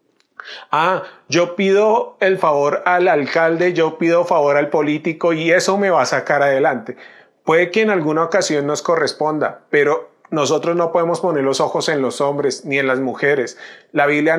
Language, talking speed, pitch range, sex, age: Spanish, 175 wpm, 150-195 Hz, male, 40-59